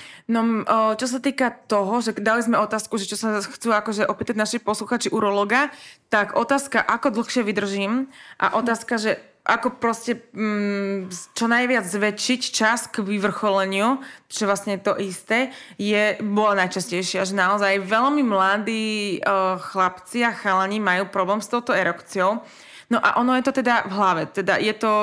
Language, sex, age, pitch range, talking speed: Slovak, female, 20-39, 195-225 Hz, 155 wpm